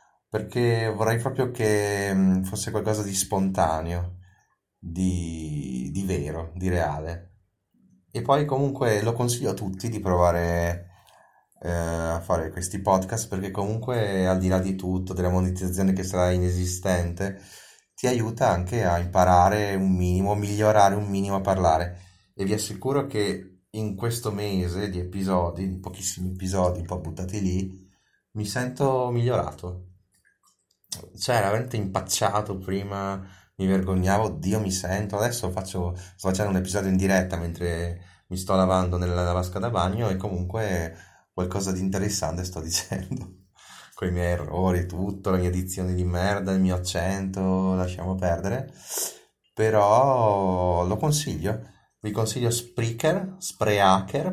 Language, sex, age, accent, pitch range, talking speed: Italian, male, 30-49, native, 90-105 Hz, 140 wpm